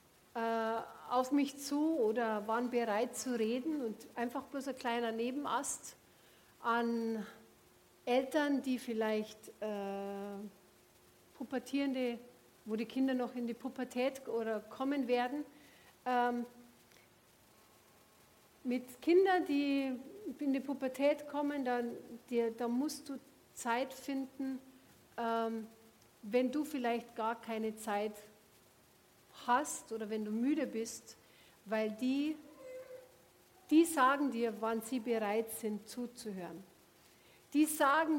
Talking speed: 110 wpm